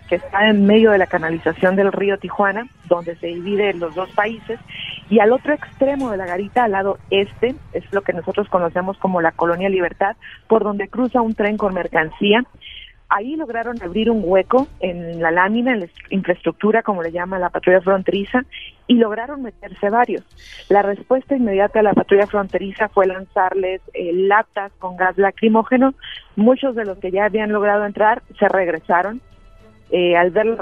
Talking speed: 180 wpm